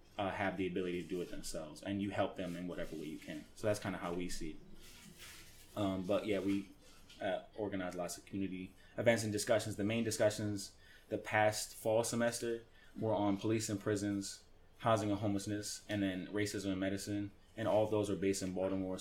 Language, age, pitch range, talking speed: English, 20-39, 95-105 Hz, 205 wpm